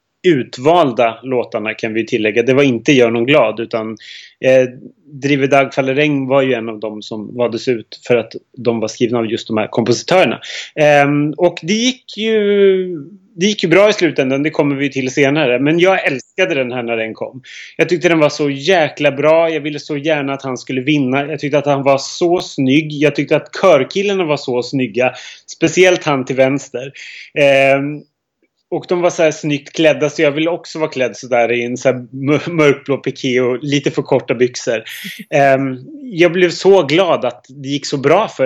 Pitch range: 125-160 Hz